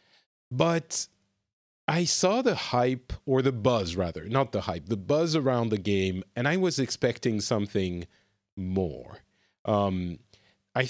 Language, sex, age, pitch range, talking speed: English, male, 40-59, 100-135 Hz, 140 wpm